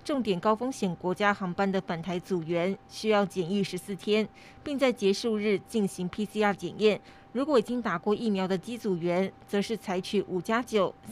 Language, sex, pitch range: Chinese, female, 190-225 Hz